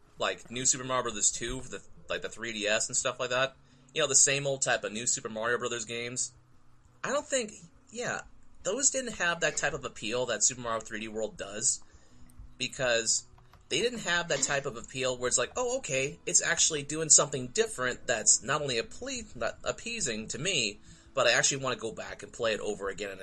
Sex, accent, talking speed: male, American, 215 wpm